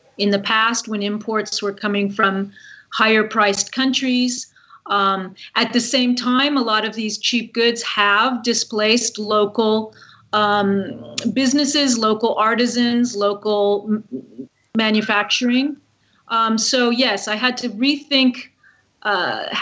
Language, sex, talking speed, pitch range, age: English, female, 120 wpm, 205-245 Hz, 30-49